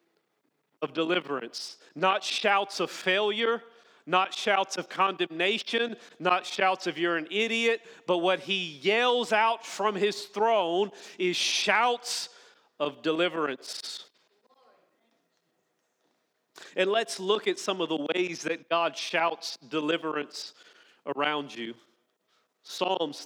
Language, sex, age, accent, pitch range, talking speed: English, male, 40-59, American, 165-225 Hz, 110 wpm